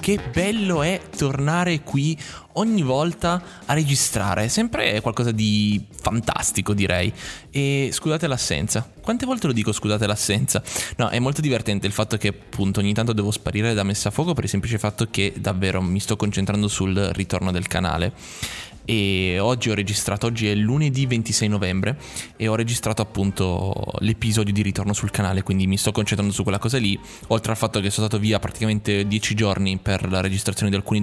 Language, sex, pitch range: Italian, male, 100-130 Hz